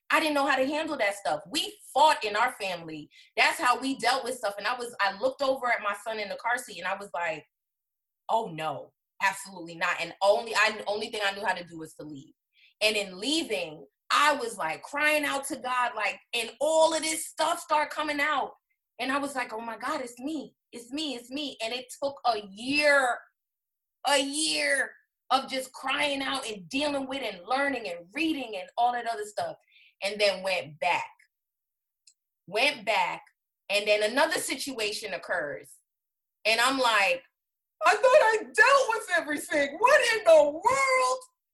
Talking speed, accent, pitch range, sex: 190 wpm, American, 210-295 Hz, female